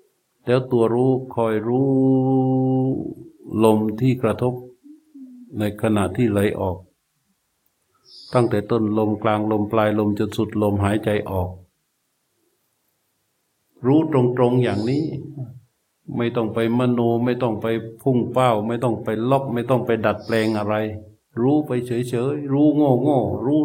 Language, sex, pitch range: Thai, male, 110-145 Hz